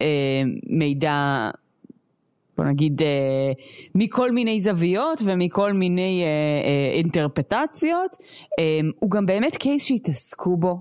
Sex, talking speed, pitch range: female, 100 wpm, 145-195 Hz